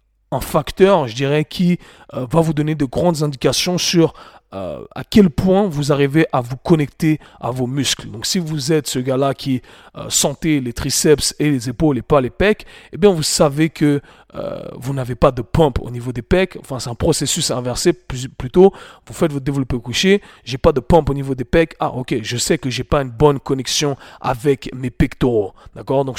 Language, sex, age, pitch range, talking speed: French, male, 40-59, 130-160 Hz, 215 wpm